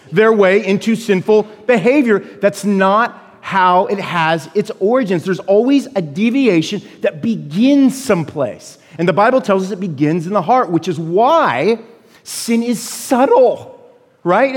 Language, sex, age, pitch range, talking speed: English, male, 40-59, 185-230 Hz, 150 wpm